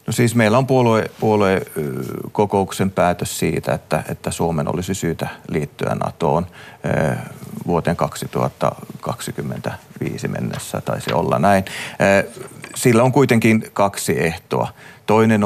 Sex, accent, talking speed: male, native, 115 wpm